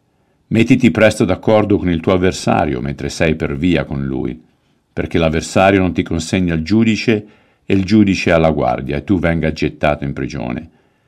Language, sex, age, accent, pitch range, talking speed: Italian, male, 50-69, native, 80-100 Hz, 170 wpm